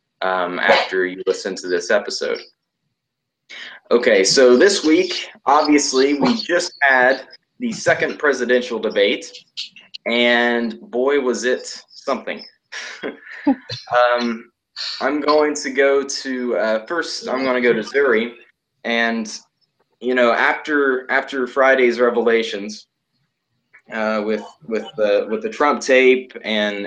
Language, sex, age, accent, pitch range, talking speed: English, male, 20-39, American, 110-140 Hz, 120 wpm